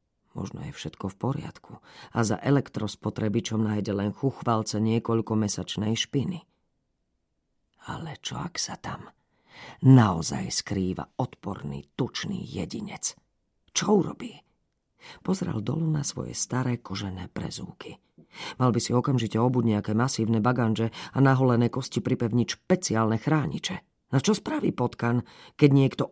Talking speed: 120 wpm